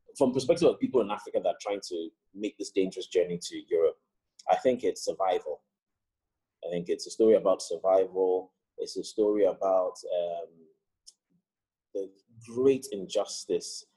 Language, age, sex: English, 30-49, male